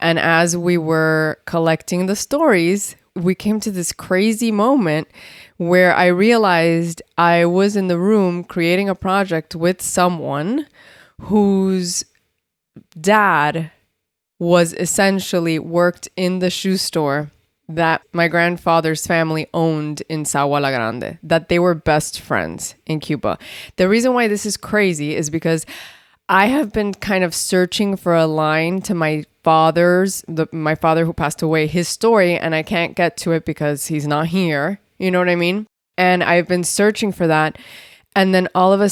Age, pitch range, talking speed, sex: 20-39, 165-200 Hz, 160 wpm, female